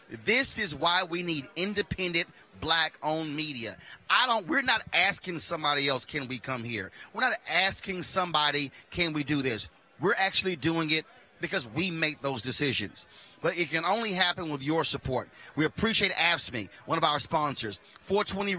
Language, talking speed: English, 170 wpm